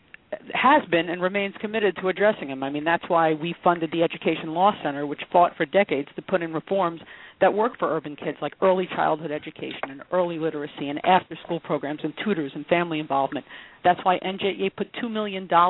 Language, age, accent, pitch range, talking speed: English, 40-59, American, 160-190 Hz, 200 wpm